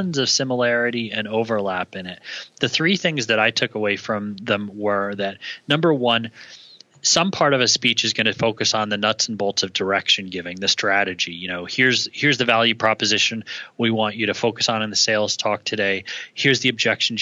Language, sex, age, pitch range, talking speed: English, male, 30-49, 105-120 Hz, 205 wpm